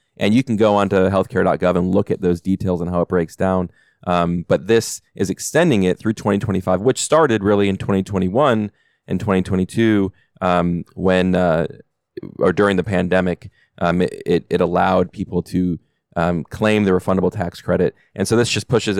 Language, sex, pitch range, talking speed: English, male, 90-110 Hz, 175 wpm